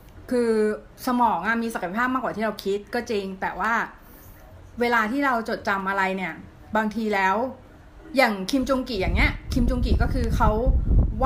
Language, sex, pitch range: Thai, female, 195-240 Hz